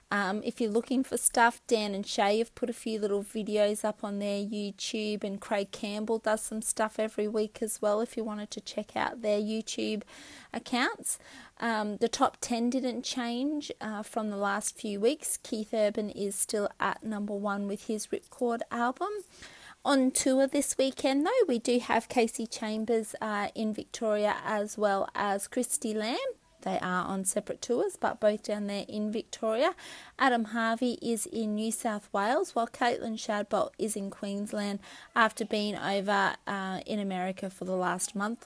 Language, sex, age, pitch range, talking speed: English, female, 30-49, 200-240 Hz, 175 wpm